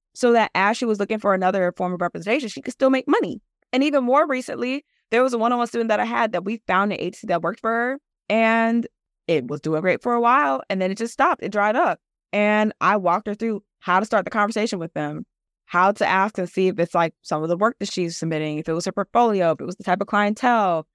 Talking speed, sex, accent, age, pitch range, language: 265 wpm, female, American, 20-39, 175-230 Hz, English